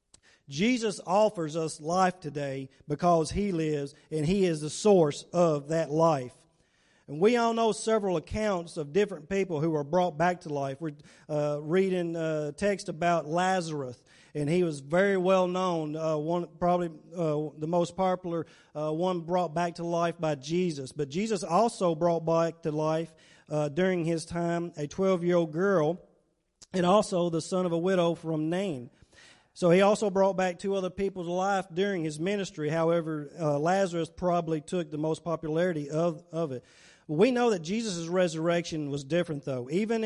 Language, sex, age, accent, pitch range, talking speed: English, male, 40-59, American, 155-185 Hz, 170 wpm